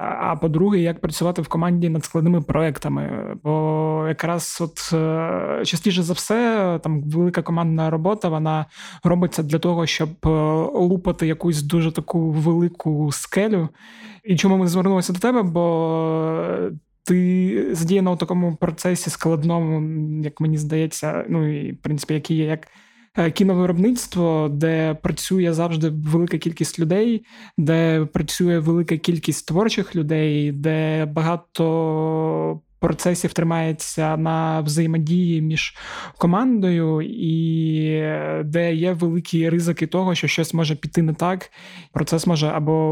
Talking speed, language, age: 125 wpm, Ukrainian, 20-39